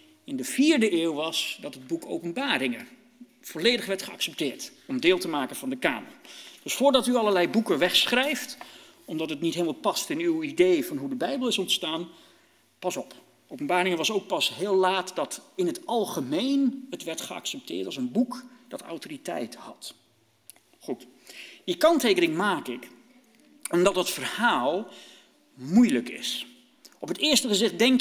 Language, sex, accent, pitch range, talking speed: Dutch, male, Dutch, 190-285 Hz, 160 wpm